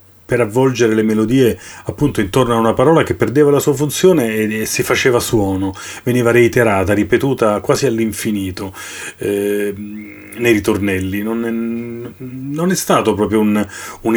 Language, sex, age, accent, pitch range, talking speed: Italian, male, 40-59, native, 100-115 Hz, 150 wpm